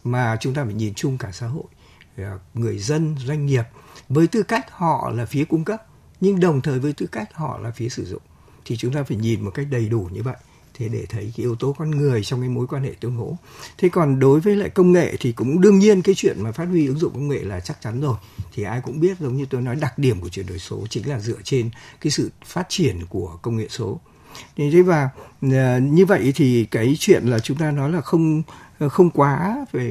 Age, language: 60-79, Vietnamese